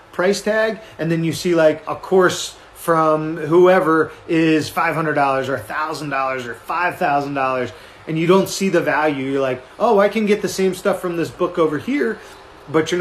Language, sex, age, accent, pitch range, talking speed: English, male, 30-49, American, 145-175 Hz, 180 wpm